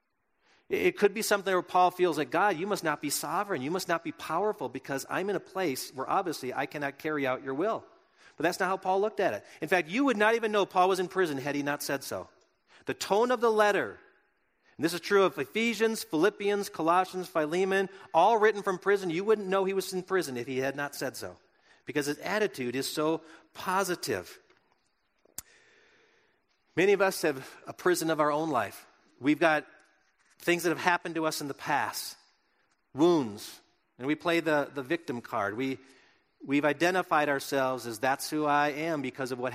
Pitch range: 135-185 Hz